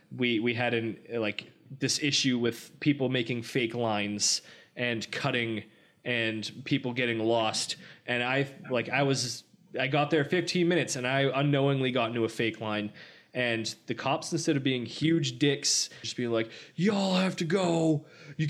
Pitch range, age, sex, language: 115-155 Hz, 20-39, male, English